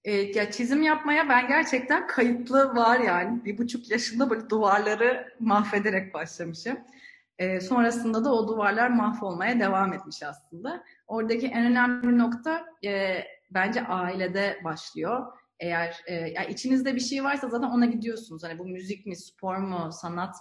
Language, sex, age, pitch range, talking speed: Turkish, female, 30-49, 180-245 Hz, 150 wpm